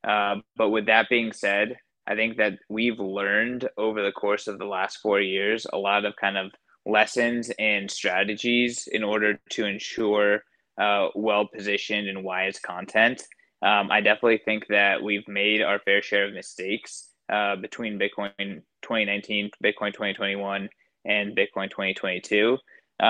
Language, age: English, 20-39